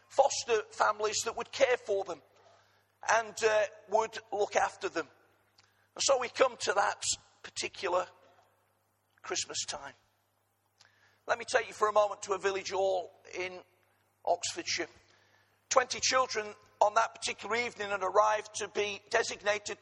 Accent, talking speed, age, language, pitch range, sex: British, 140 wpm, 50-69, English, 195-240 Hz, male